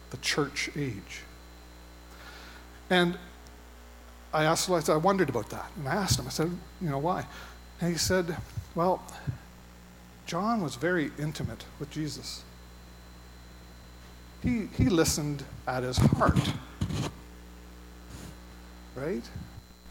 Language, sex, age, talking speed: English, male, 50-69, 120 wpm